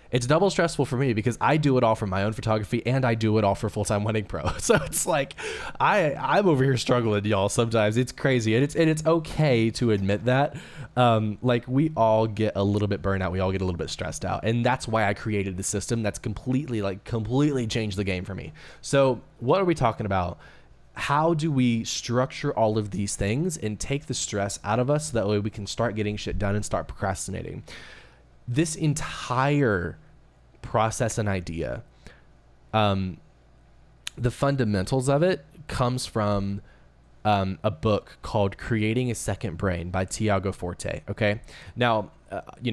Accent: American